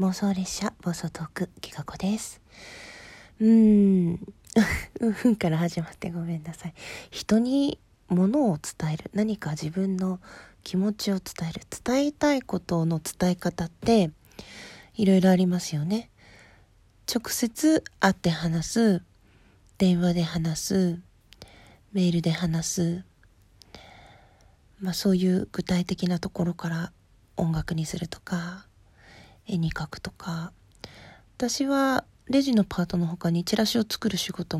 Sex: female